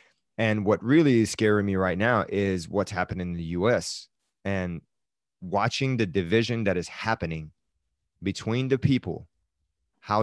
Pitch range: 90-110 Hz